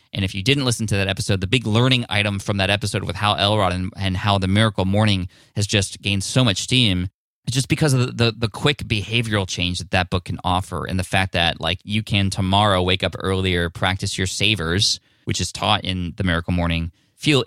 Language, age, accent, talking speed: English, 20-39, American, 230 wpm